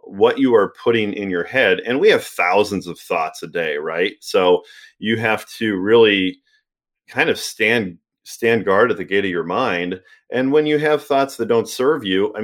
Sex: male